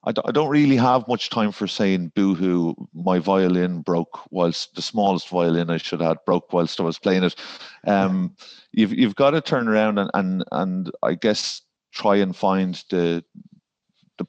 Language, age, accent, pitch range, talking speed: English, 30-49, Irish, 90-115 Hz, 175 wpm